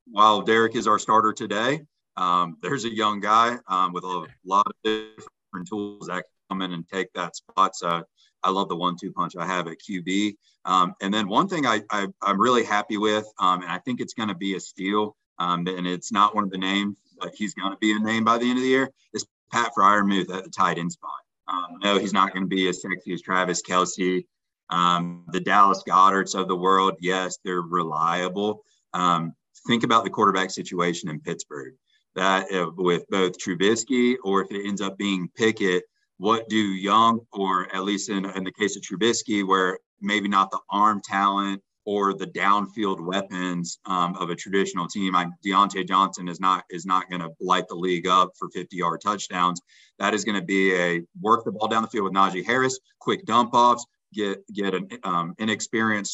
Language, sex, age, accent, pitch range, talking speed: English, male, 30-49, American, 90-105 Hz, 210 wpm